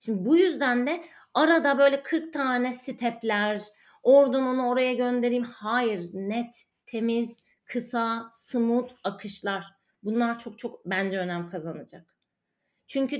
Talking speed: 120 wpm